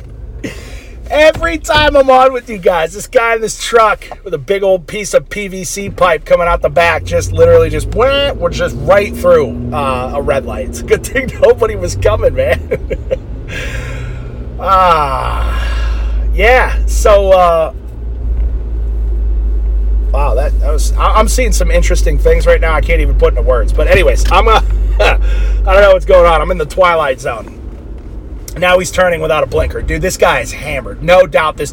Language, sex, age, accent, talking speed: English, male, 30-49, American, 185 wpm